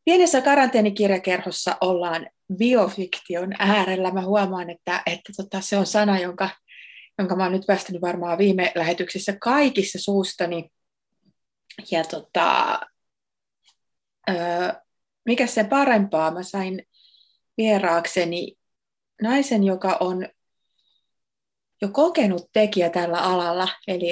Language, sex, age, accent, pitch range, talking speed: Finnish, female, 30-49, native, 175-215 Hz, 100 wpm